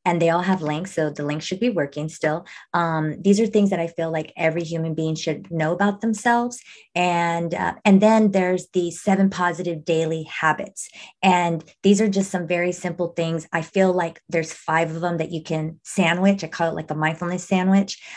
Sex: female